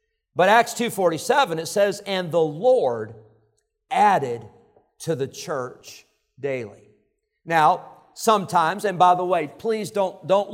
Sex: male